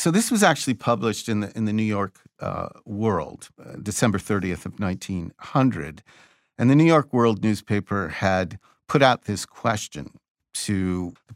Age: 50-69